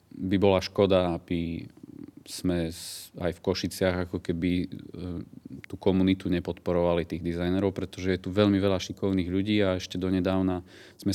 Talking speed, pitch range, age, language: 140 wpm, 90-100 Hz, 30-49, Slovak